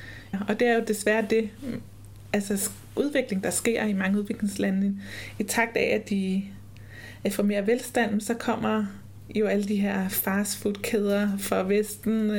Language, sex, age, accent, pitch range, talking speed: Danish, female, 20-39, native, 200-225 Hz, 150 wpm